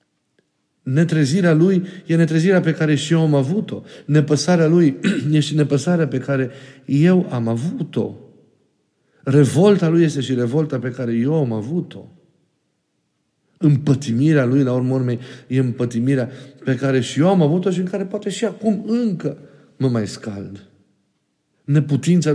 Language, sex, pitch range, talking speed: Romanian, male, 120-165 Hz, 140 wpm